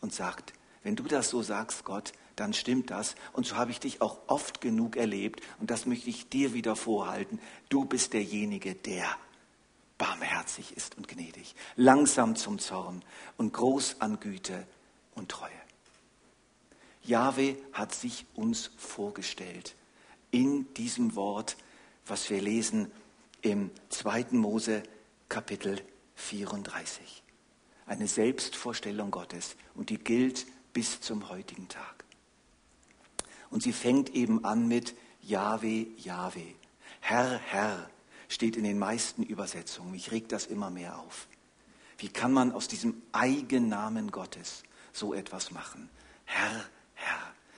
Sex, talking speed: male, 130 wpm